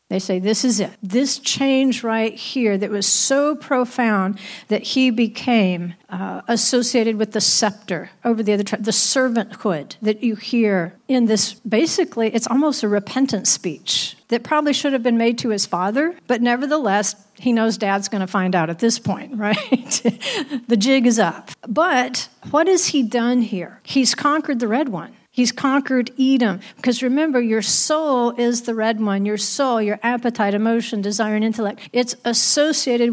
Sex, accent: female, American